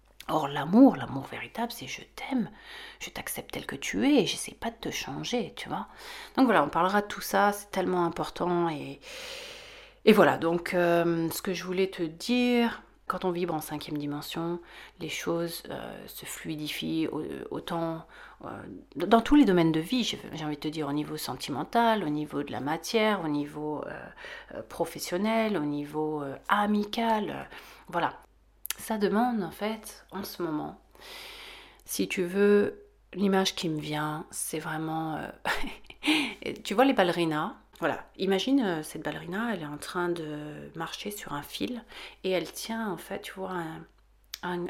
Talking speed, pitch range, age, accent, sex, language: 170 wpm, 160-220 Hz, 40-59, French, female, French